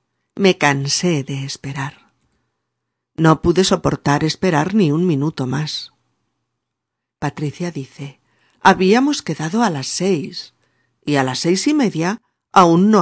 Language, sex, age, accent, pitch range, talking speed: Spanish, female, 50-69, Spanish, 140-190 Hz, 125 wpm